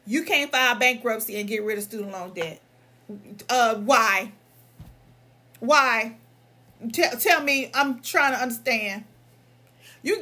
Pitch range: 220-310 Hz